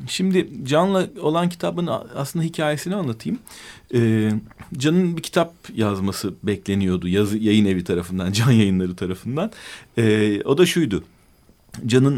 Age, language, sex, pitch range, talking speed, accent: 40-59, Turkish, male, 100-155 Hz, 125 wpm, native